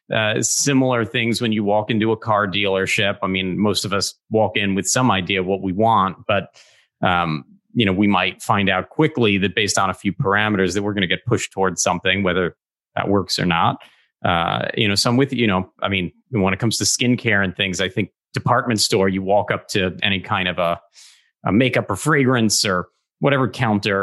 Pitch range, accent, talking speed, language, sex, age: 100-130 Hz, American, 215 wpm, English, male, 30-49